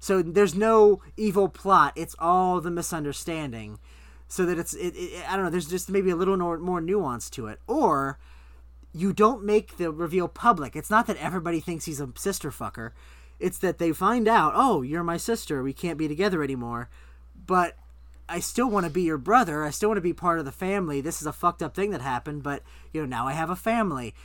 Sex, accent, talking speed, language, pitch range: male, American, 215 wpm, English, 135-185 Hz